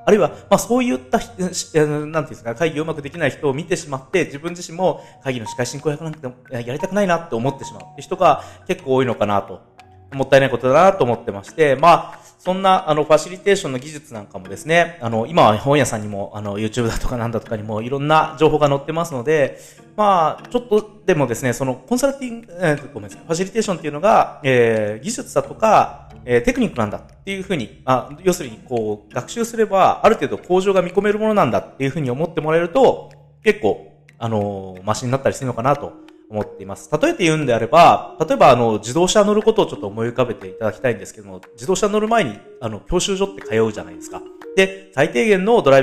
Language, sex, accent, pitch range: Japanese, male, native, 120-185 Hz